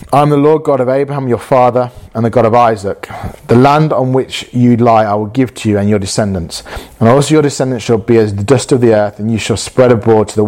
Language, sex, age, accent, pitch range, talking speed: English, male, 30-49, British, 105-125 Hz, 270 wpm